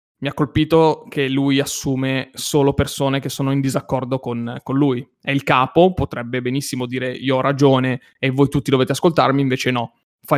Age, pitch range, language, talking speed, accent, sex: 20-39, 130-145 Hz, Italian, 185 wpm, native, male